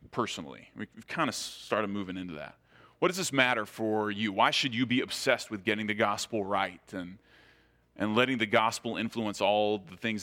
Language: English